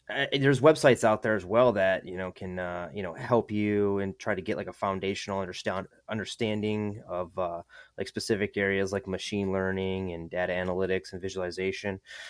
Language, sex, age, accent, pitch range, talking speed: English, male, 20-39, American, 90-105 Hz, 185 wpm